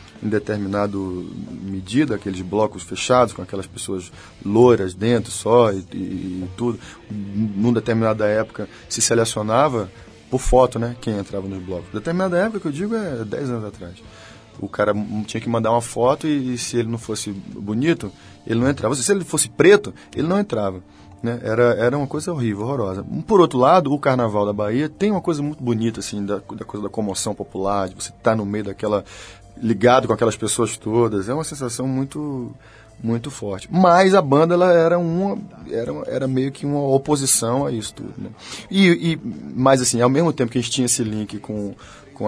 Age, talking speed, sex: 20-39, 190 wpm, male